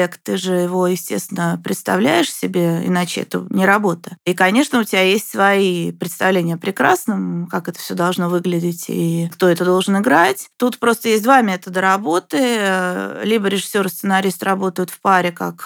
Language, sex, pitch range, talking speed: Russian, female, 180-235 Hz, 165 wpm